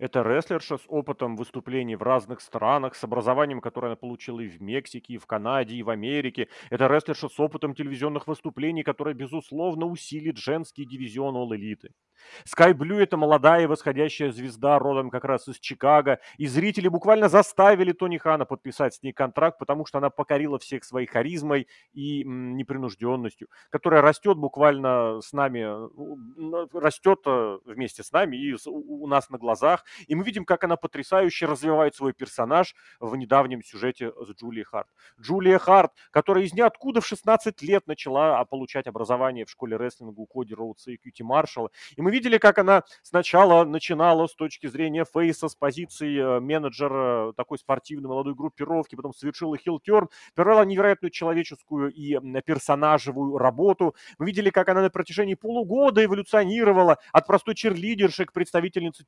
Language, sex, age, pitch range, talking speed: Russian, male, 30-49, 130-175 Hz, 155 wpm